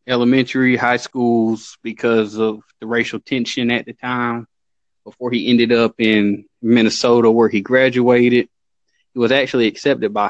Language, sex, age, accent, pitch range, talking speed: English, male, 20-39, American, 110-125 Hz, 145 wpm